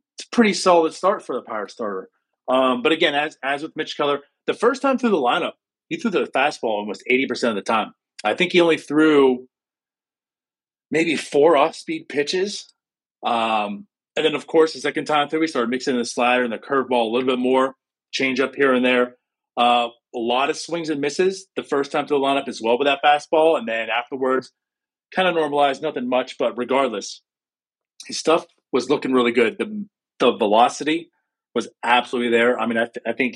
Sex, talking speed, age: male, 200 wpm, 30-49